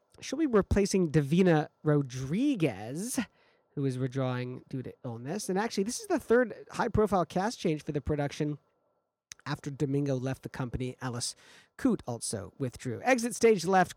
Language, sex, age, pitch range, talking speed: English, male, 40-59, 135-180 Hz, 150 wpm